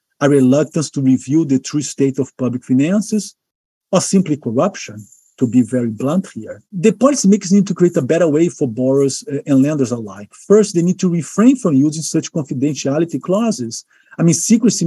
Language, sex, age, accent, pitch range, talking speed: English, male, 50-69, Brazilian, 130-175 Hz, 180 wpm